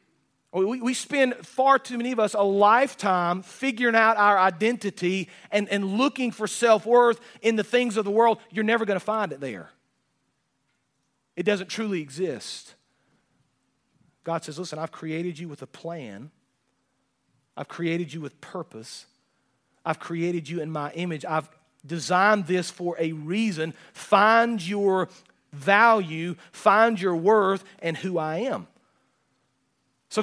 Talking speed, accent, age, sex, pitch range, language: 145 wpm, American, 40-59, male, 175-220 Hz, English